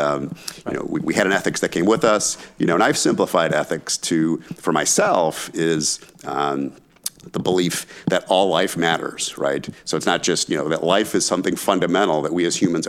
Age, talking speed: 50-69, 210 wpm